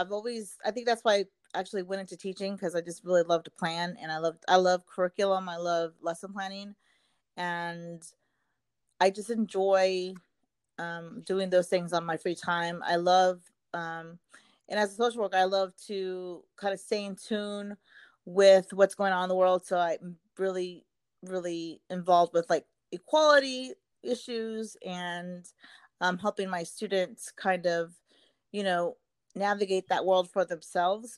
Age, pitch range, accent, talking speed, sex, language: 30-49, 175-200 Hz, American, 165 wpm, female, English